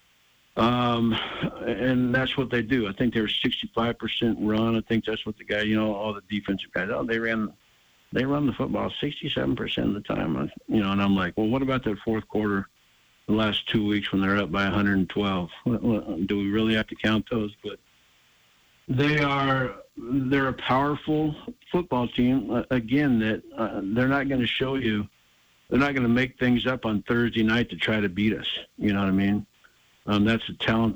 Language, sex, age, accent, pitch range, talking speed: English, male, 50-69, American, 105-125 Hz, 200 wpm